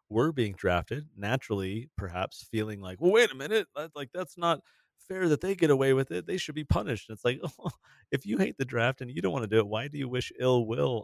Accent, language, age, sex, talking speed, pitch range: American, English, 30-49, male, 245 wpm, 90-130 Hz